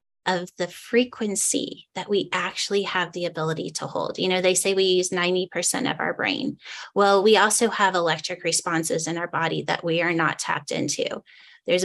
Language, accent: English, American